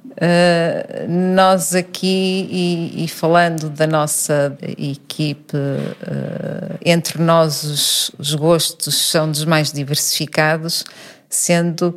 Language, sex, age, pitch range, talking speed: Portuguese, female, 50-69, 145-170 Hz, 90 wpm